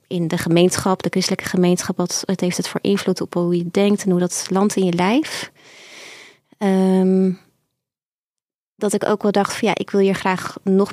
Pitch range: 185-210 Hz